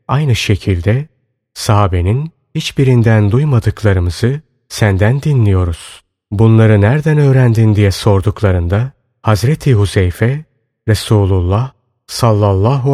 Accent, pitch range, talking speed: native, 100-130 Hz, 75 wpm